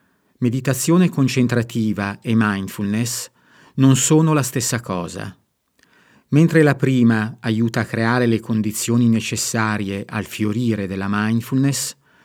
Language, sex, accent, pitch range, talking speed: Italian, male, native, 110-130 Hz, 110 wpm